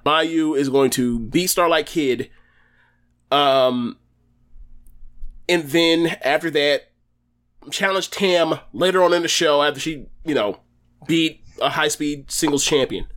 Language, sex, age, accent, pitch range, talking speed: English, male, 20-39, American, 120-165 Hz, 130 wpm